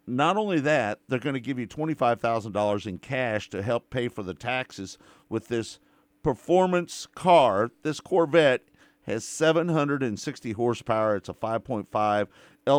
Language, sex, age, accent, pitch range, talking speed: English, male, 50-69, American, 110-145 Hz, 135 wpm